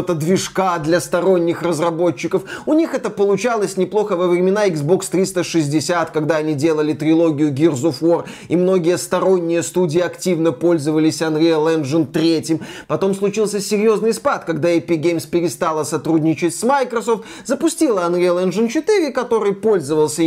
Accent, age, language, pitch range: native, 20-39, Russian, 165-200 Hz